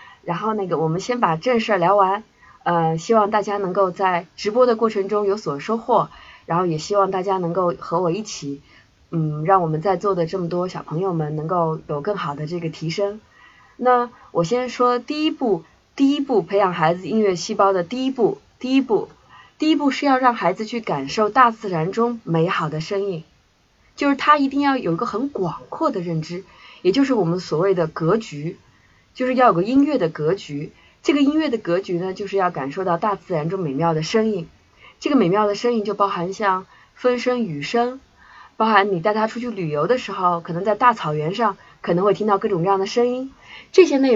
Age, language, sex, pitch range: 20-39, Chinese, female, 175-240 Hz